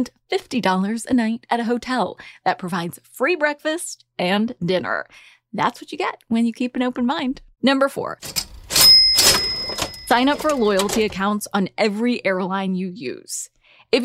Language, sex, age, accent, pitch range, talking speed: English, female, 20-39, American, 195-270 Hz, 145 wpm